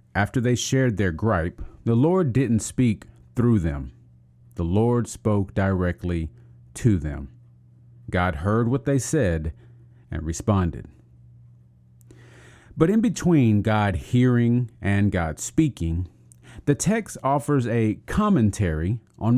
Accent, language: American, English